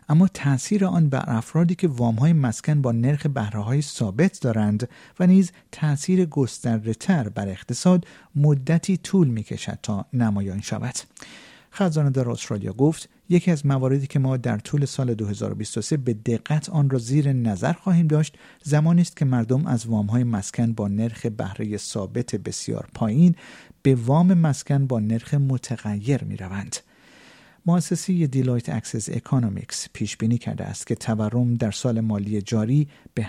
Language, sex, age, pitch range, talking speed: Persian, male, 50-69, 115-155 Hz, 150 wpm